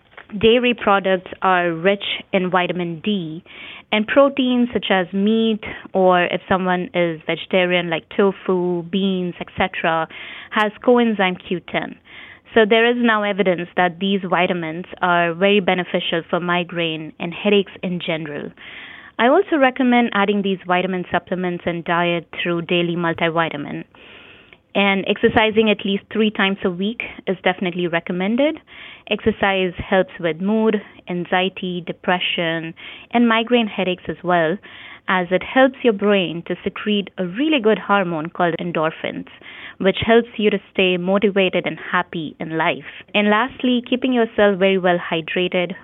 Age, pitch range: 20-39, 175-210 Hz